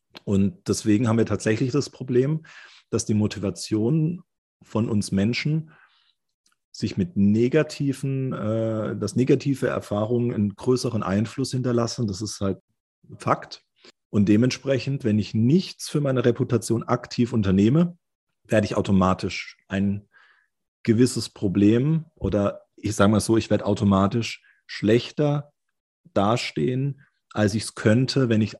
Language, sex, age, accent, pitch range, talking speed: German, male, 40-59, German, 95-120 Hz, 125 wpm